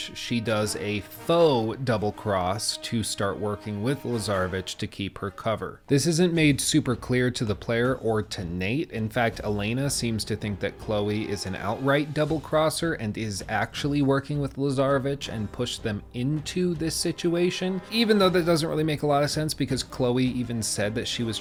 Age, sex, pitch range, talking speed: 30-49, male, 100-130 Hz, 190 wpm